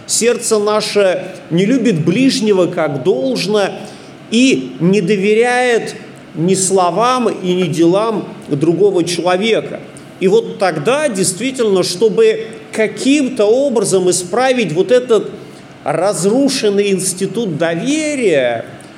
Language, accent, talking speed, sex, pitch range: Russian, native, 95 wpm, male, 160-220 Hz